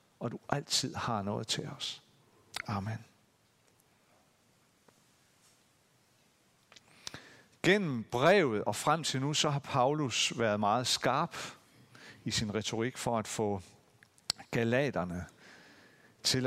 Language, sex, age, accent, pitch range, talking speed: Danish, male, 50-69, native, 110-155 Hz, 100 wpm